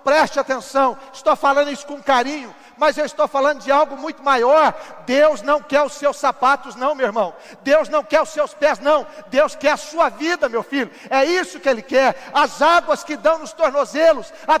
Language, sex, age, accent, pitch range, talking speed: Portuguese, male, 60-79, Brazilian, 270-310 Hz, 205 wpm